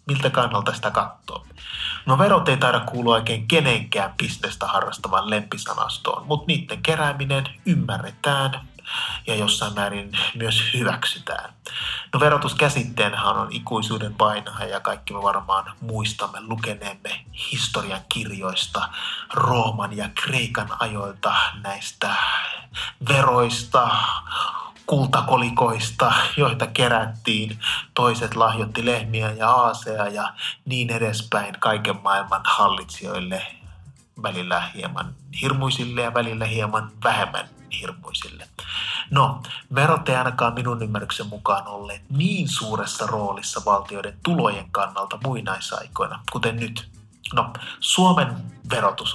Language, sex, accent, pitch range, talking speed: Finnish, male, native, 105-125 Hz, 100 wpm